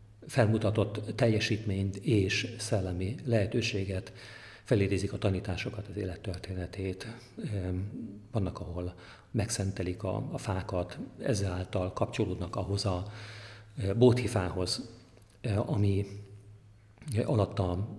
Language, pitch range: Hungarian, 95-115 Hz